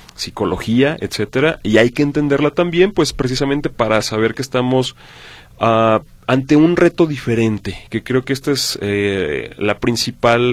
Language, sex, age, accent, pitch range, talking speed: Spanish, male, 30-49, Mexican, 105-135 Hz, 150 wpm